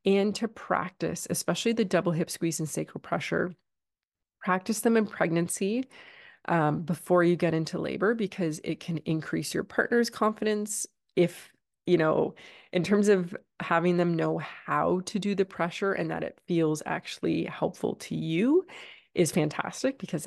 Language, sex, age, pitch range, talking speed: English, female, 20-39, 160-195 Hz, 155 wpm